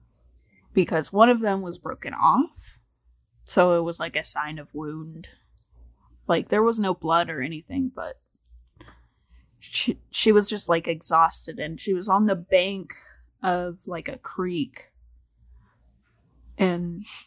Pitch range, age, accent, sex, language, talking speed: 165-220 Hz, 20-39, American, female, English, 140 wpm